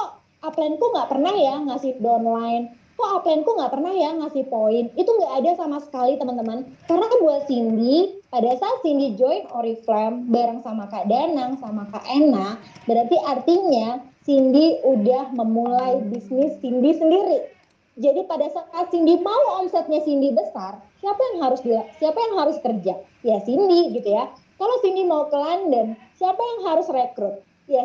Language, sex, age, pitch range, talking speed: Indonesian, female, 20-39, 245-345 Hz, 155 wpm